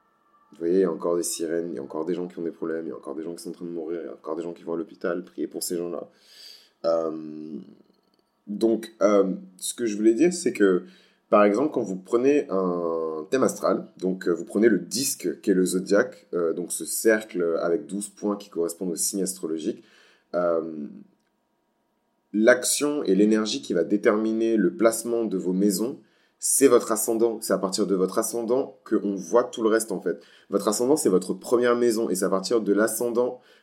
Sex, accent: male, French